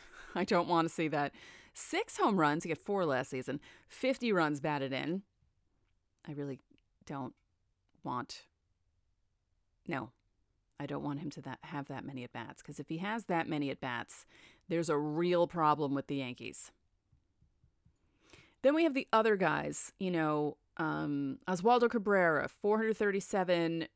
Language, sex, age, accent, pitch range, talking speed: English, female, 30-49, American, 145-210 Hz, 145 wpm